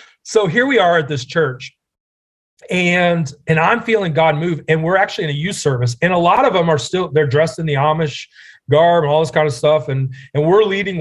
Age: 30-49